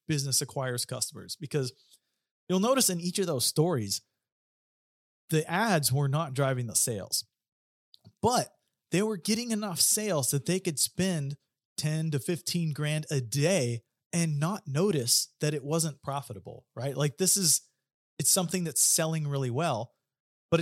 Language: English